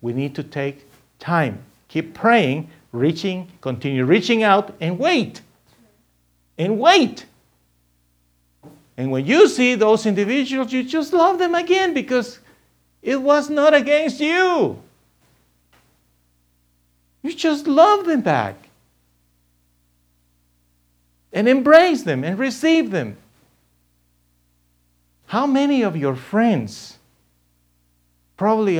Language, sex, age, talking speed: English, male, 50-69, 100 wpm